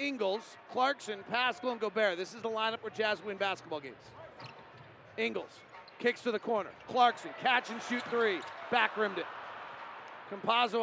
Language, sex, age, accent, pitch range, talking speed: English, male, 40-59, American, 200-240 Hz, 155 wpm